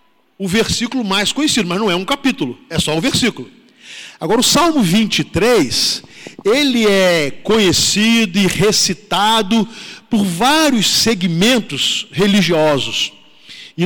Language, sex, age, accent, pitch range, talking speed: Portuguese, male, 50-69, Brazilian, 165-215 Hz, 115 wpm